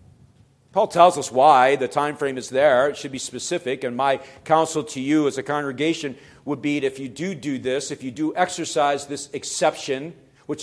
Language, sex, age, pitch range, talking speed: English, male, 50-69, 130-165 Hz, 205 wpm